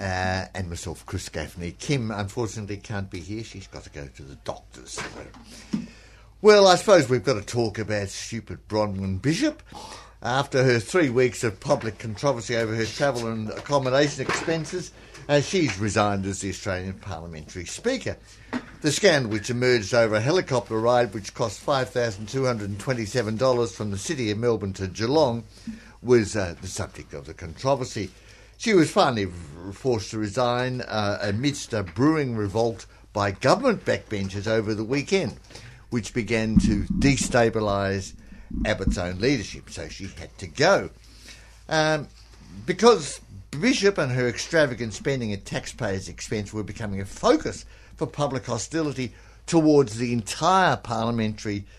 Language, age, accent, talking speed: English, 60-79, British, 145 wpm